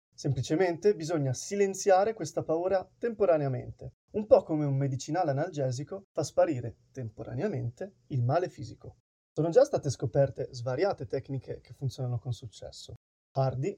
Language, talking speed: Italian, 125 wpm